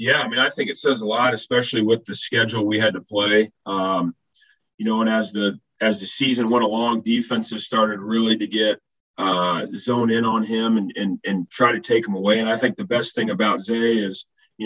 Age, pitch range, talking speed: 40-59, 105-115 Hz, 230 wpm